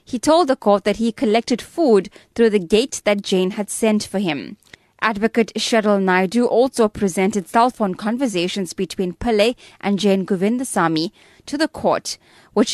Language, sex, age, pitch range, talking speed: English, female, 20-39, 190-245 Hz, 160 wpm